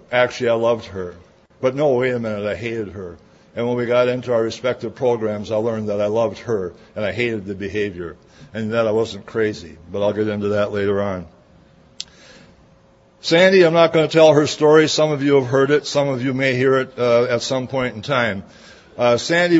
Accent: American